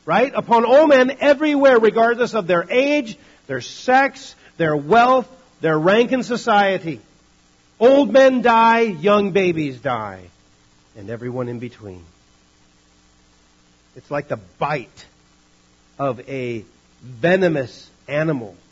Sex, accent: male, American